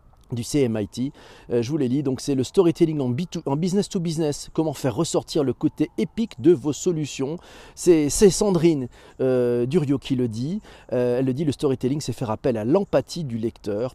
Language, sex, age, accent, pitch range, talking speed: French, male, 40-59, French, 120-180 Hz, 200 wpm